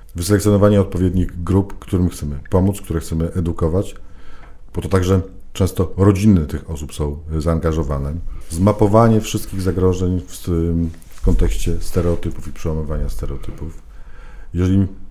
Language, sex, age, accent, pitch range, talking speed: Polish, male, 40-59, native, 85-100 Hz, 110 wpm